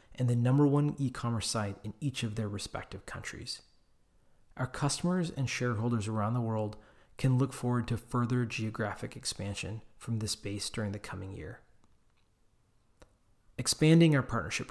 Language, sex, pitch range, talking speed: English, male, 110-130 Hz, 145 wpm